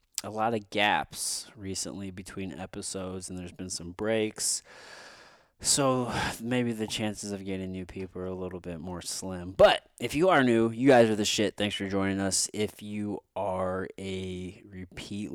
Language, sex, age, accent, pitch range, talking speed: English, male, 20-39, American, 95-135 Hz, 175 wpm